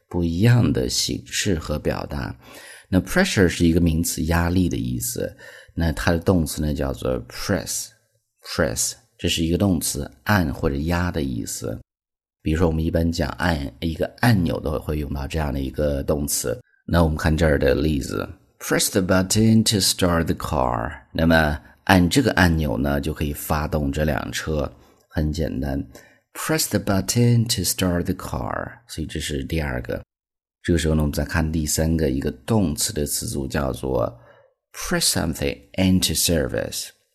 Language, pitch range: Chinese, 75-90 Hz